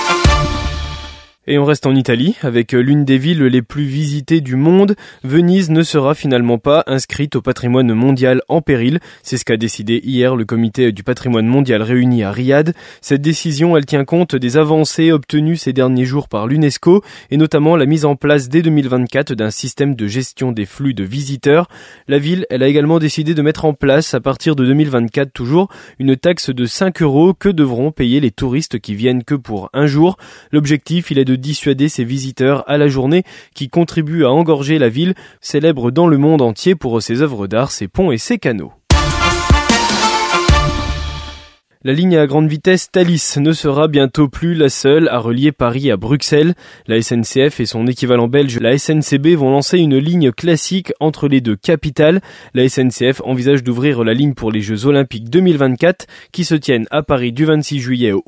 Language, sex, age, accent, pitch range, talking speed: French, male, 20-39, French, 125-160 Hz, 185 wpm